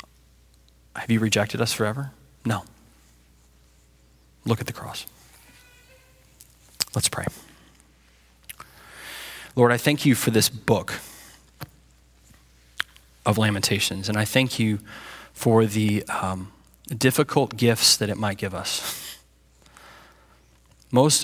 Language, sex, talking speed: English, male, 100 wpm